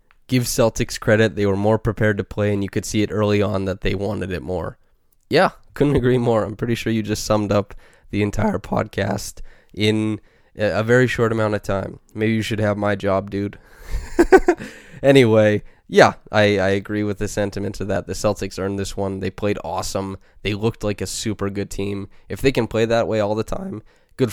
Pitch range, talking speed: 100-120 Hz, 205 wpm